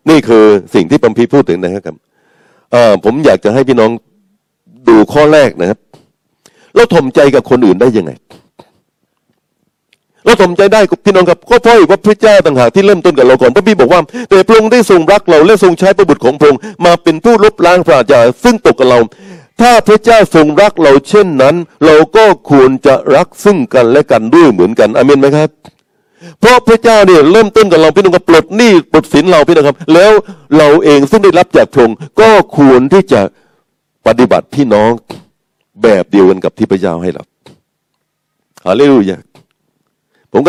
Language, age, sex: Thai, 60-79, male